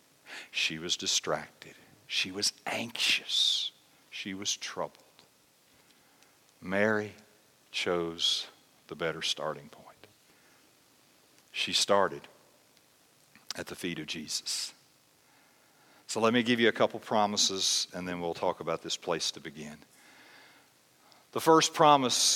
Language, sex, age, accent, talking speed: English, male, 50-69, American, 115 wpm